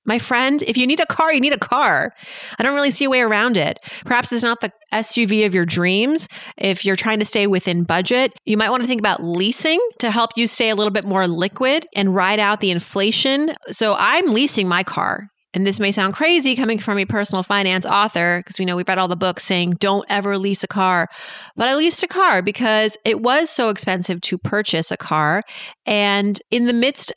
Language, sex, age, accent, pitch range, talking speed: English, female, 30-49, American, 200-250 Hz, 225 wpm